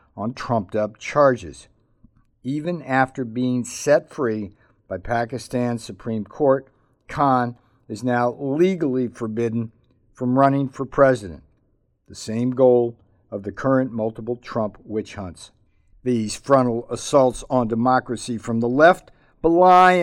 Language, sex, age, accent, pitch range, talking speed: English, male, 50-69, American, 115-145 Hz, 120 wpm